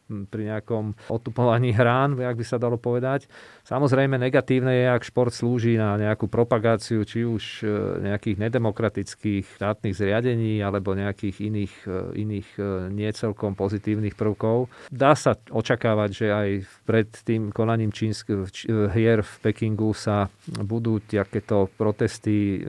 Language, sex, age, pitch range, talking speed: Slovak, male, 40-59, 105-115 Hz, 125 wpm